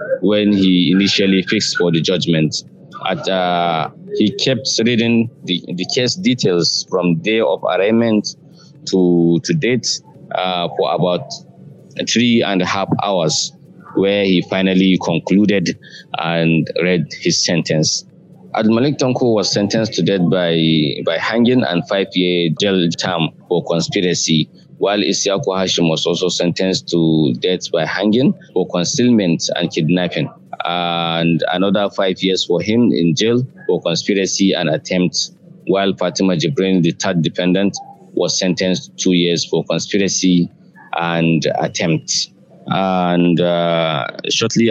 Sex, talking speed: male, 130 wpm